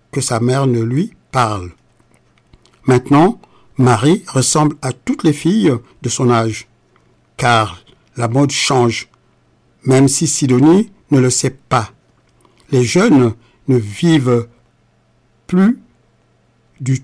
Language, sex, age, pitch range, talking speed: French, male, 60-79, 125-160 Hz, 115 wpm